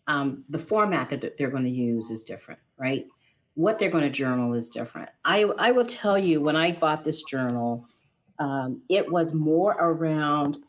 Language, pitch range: English, 140-170 Hz